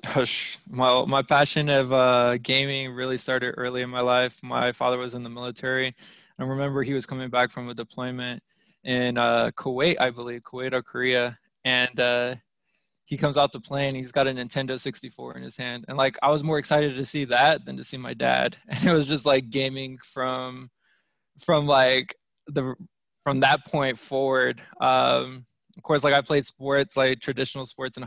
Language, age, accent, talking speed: English, 20-39, American, 190 wpm